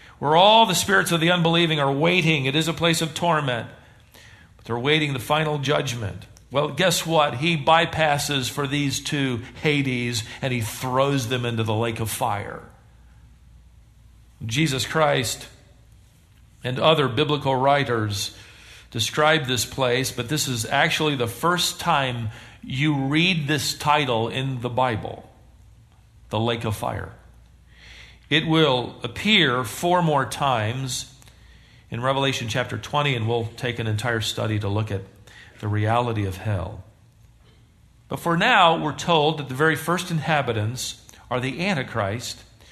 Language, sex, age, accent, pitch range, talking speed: English, male, 50-69, American, 110-150 Hz, 140 wpm